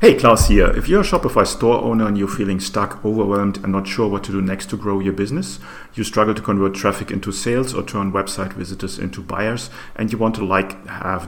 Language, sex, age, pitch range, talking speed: English, male, 40-59, 95-110 Hz, 235 wpm